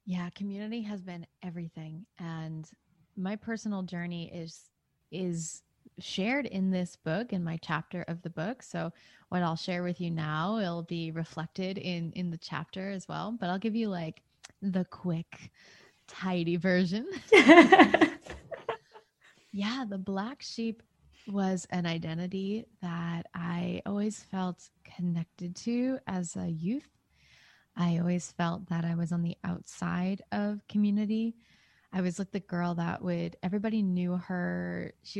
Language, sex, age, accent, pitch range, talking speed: English, female, 20-39, American, 170-205 Hz, 145 wpm